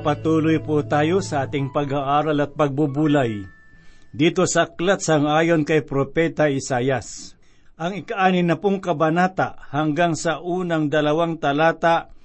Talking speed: 115 wpm